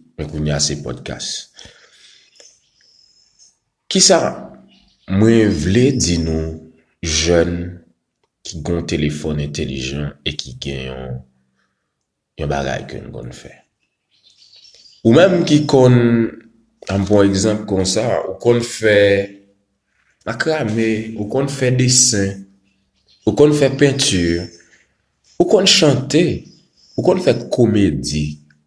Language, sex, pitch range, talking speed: Filipino, male, 80-120 Hz, 105 wpm